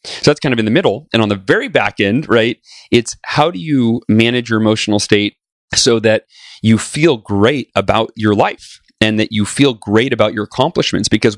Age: 30-49